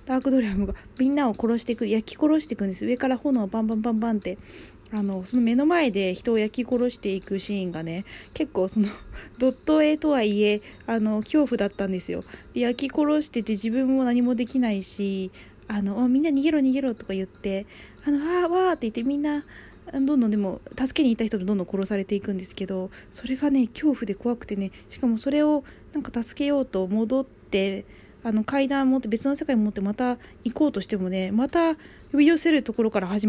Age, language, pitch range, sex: 20-39, Japanese, 195-265 Hz, female